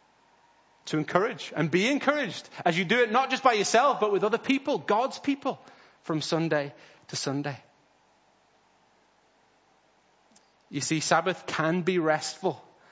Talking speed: 135 wpm